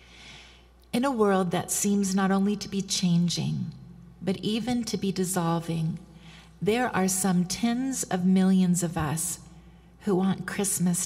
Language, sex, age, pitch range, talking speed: English, female, 40-59, 165-200 Hz, 140 wpm